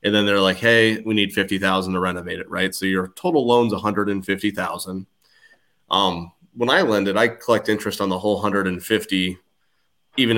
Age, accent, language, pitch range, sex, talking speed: 30-49, American, English, 95-110 Hz, male, 215 wpm